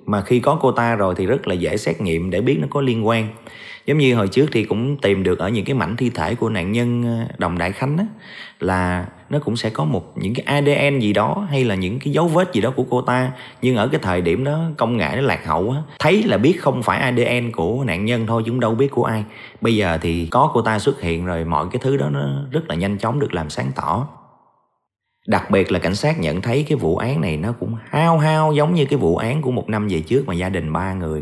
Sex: male